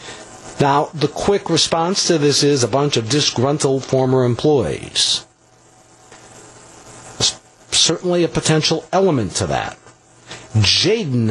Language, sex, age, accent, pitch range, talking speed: English, male, 60-79, American, 115-155 Hz, 110 wpm